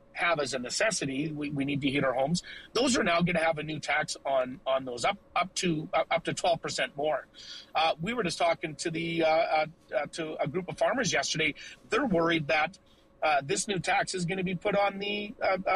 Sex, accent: male, American